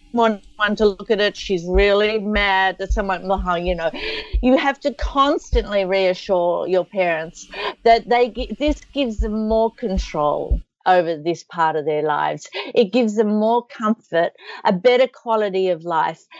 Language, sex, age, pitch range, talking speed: English, female, 50-69, 185-230 Hz, 155 wpm